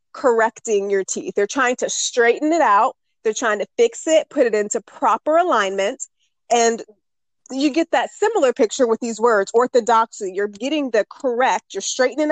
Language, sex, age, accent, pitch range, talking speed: English, female, 20-39, American, 215-285 Hz, 170 wpm